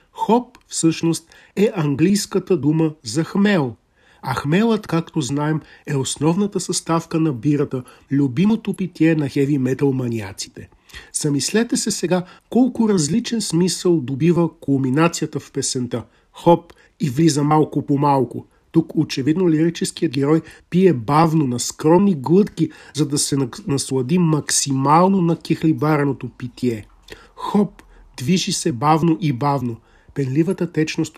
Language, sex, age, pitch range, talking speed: Bulgarian, male, 50-69, 145-175 Hz, 120 wpm